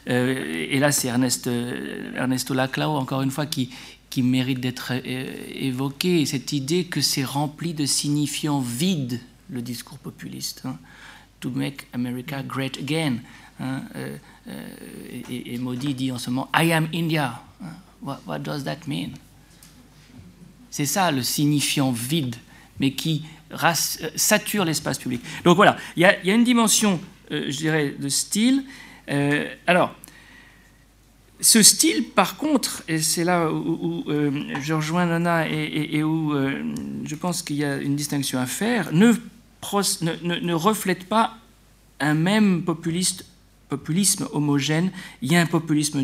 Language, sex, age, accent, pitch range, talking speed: French, male, 50-69, French, 130-175 Hz, 165 wpm